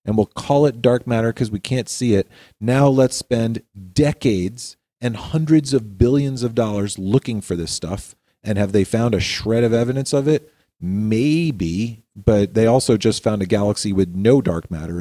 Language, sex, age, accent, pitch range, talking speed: English, male, 40-59, American, 95-115 Hz, 190 wpm